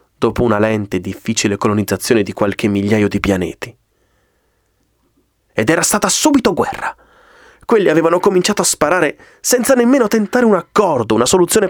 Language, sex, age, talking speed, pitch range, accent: Italian, male, 30-49, 145 wpm, 110-180 Hz, native